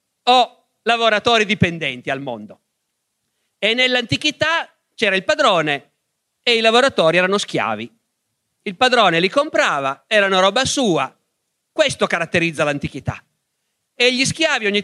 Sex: male